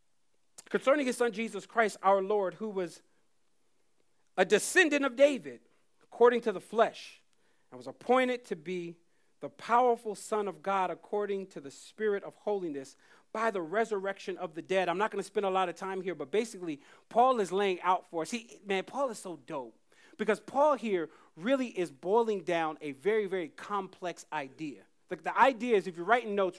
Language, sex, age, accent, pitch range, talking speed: English, male, 40-59, American, 180-235 Hz, 185 wpm